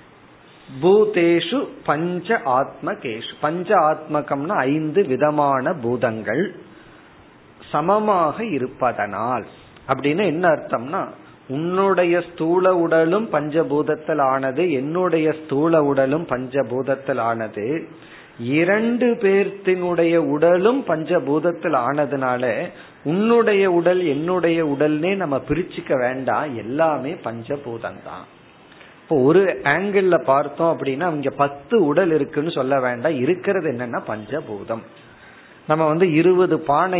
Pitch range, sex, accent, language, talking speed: 140-185 Hz, male, native, Tamil, 70 wpm